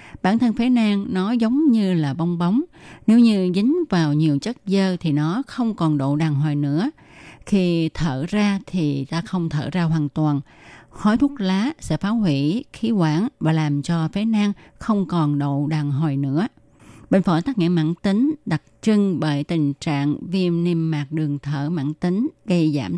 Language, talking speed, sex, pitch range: Vietnamese, 195 wpm, female, 150-200 Hz